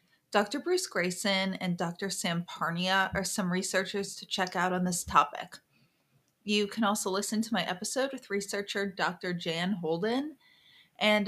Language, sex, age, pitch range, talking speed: English, female, 30-49, 175-215 Hz, 155 wpm